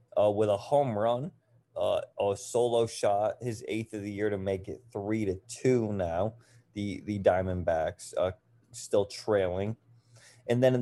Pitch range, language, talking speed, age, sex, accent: 100-120 Hz, English, 165 wpm, 20-39, male, American